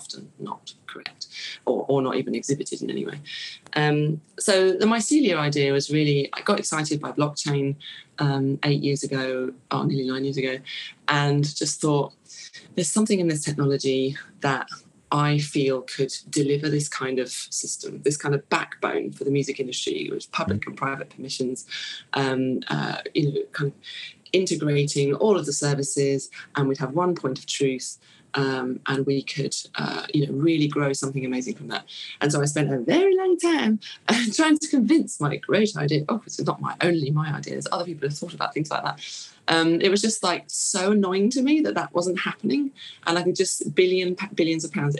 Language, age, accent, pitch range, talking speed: English, 20-39, British, 135-175 Hz, 185 wpm